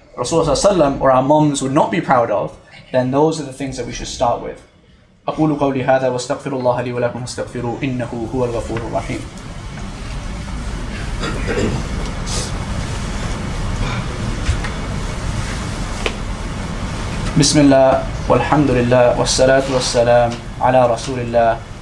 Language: English